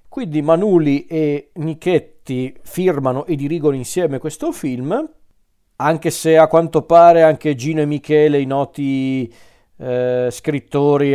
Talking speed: 125 wpm